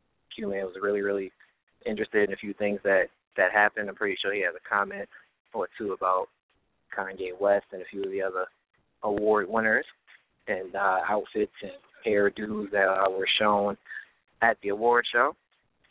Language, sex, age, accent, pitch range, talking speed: English, male, 20-39, American, 100-115 Hz, 170 wpm